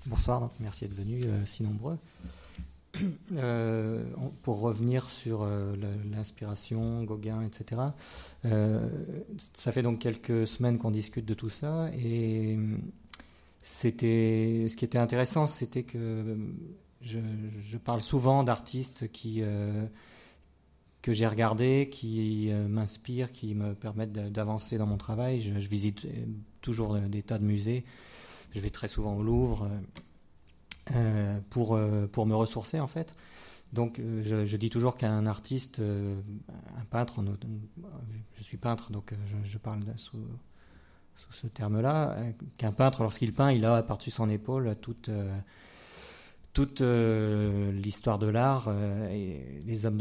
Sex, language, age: male, French, 40-59